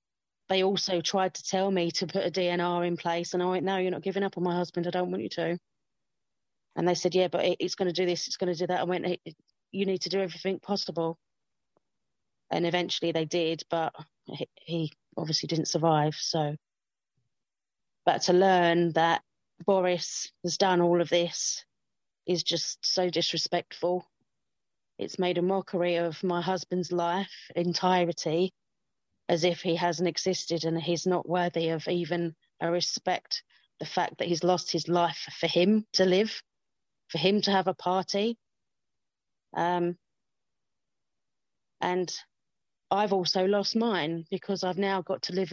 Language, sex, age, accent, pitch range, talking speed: English, female, 30-49, British, 170-190 Hz, 165 wpm